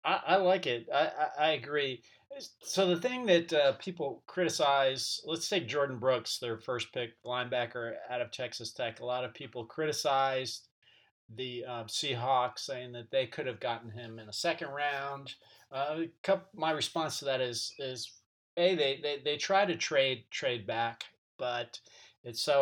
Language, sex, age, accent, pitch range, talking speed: English, male, 40-59, American, 120-155 Hz, 180 wpm